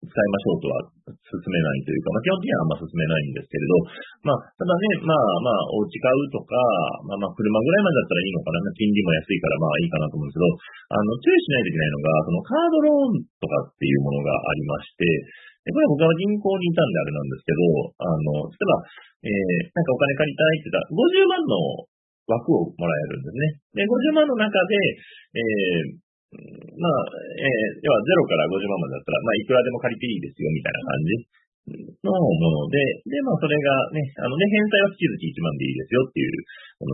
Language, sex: Japanese, male